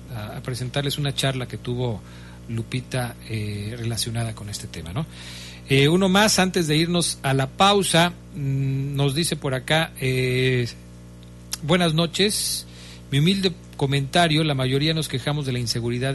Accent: Mexican